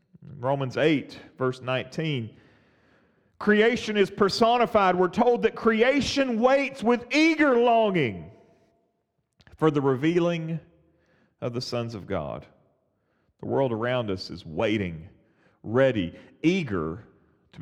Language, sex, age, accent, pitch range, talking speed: English, male, 40-59, American, 130-215 Hz, 110 wpm